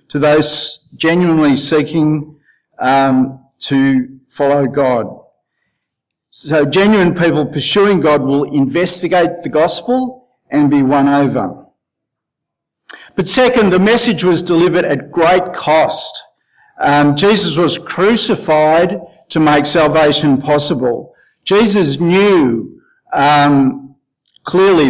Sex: male